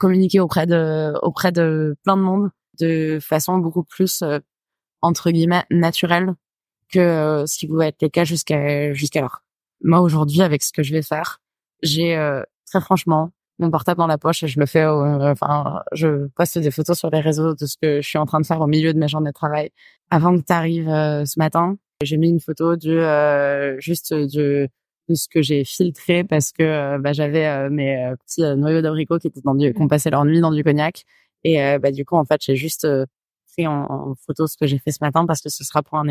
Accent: French